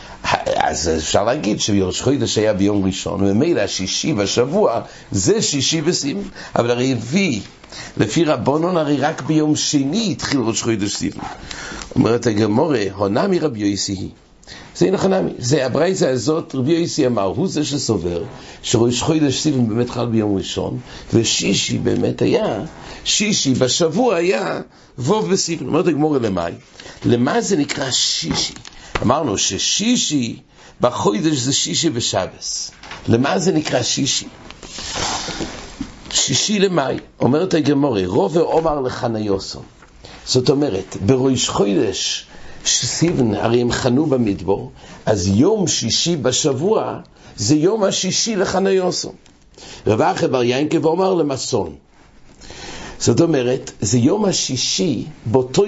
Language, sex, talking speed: English, male, 100 wpm